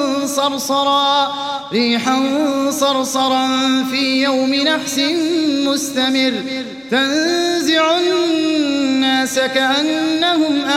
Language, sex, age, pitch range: Arabic, male, 30-49, 265-310 Hz